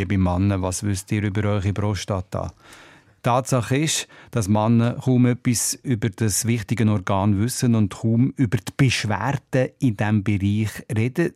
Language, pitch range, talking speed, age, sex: German, 105-125 Hz, 155 wpm, 50-69, male